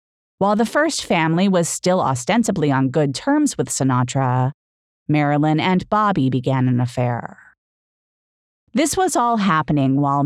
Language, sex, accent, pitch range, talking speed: English, female, American, 135-185 Hz, 135 wpm